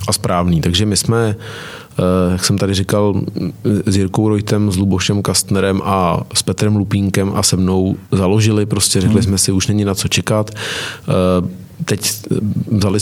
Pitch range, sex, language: 95-105 Hz, male, Czech